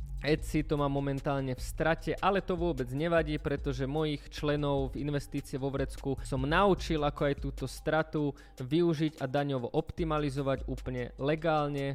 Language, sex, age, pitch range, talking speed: Slovak, male, 20-39, 135-155 Hz, 145 wpm